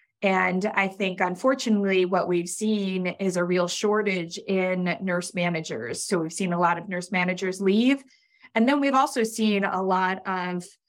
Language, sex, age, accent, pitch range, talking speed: English, female, 20-39, American, 175-210 Hz, 170 wpm